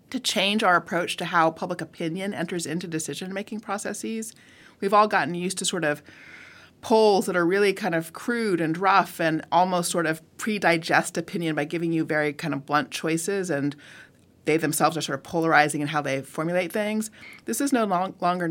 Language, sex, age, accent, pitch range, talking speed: English, female, 30-49, American, 155-185 Hz, 190 wpm